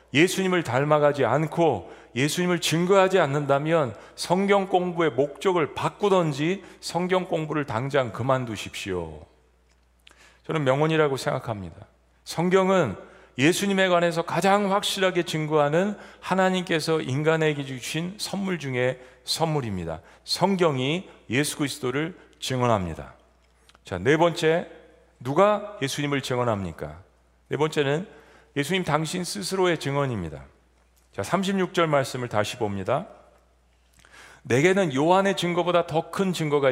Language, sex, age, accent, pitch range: Korean, male, 40-59, native, 125-170 Hz